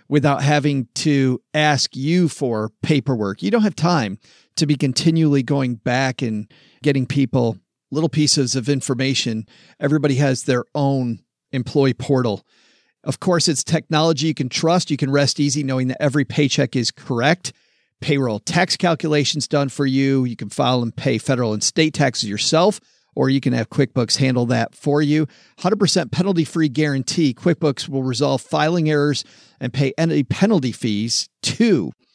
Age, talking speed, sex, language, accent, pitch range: 40-59, 160 wpm, male, English, American, 130-160 Hz